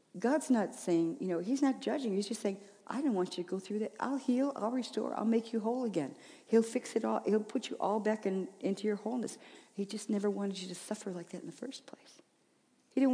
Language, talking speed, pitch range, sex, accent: English, 255 wpm, 170-225 Hz, female, American